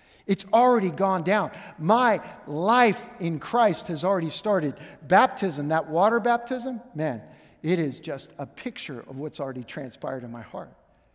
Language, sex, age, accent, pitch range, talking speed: English, male, 50-69, American, 185-250 Hz, 150 wpm